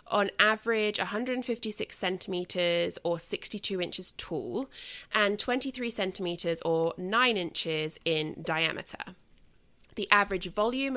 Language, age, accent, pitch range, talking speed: English, 20-39, British, 170-220 Hz, 105 wpm